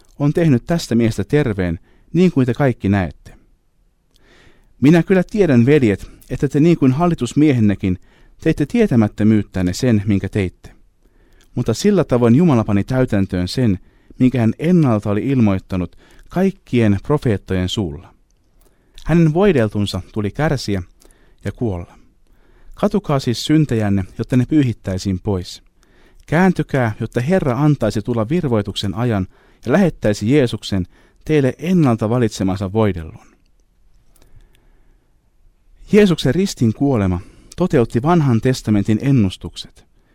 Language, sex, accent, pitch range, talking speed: Finnish, male, native, 100-145 Hz, 110 wpm